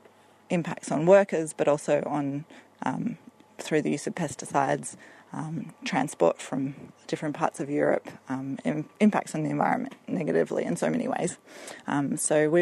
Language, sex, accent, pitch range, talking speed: English, female, Australian, 140-160 Hz, 150 wpm